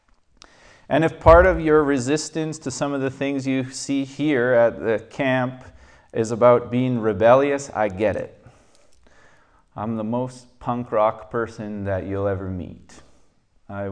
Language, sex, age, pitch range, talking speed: English, male, 30-49, 105-140 Hz, 150 wpm